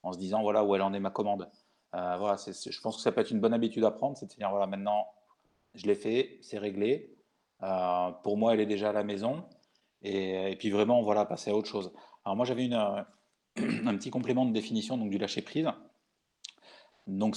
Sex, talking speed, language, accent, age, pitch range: male, 230 wpm, French, French, 30-49, 100-115 Hz